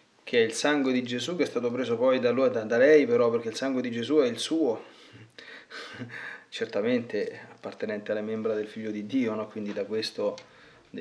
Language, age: Italian, 20-39